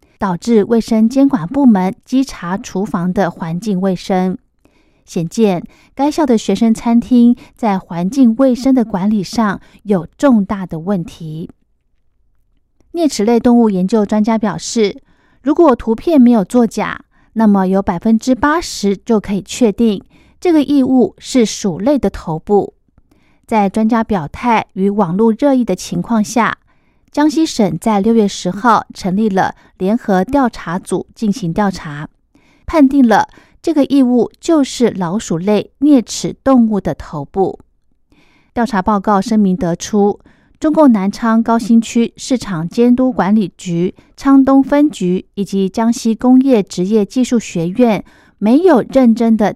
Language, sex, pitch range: Chinese, female, 190-245 Hz